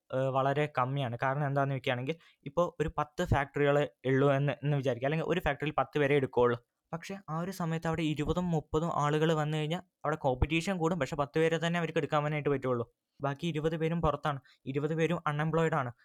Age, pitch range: 20-39, 135-155 Hz